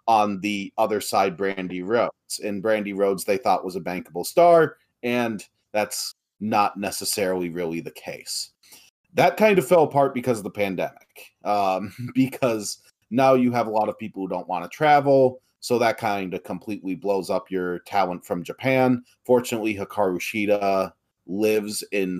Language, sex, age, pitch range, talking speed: English, male, 30-49, 95-125 Hz, 165 wpm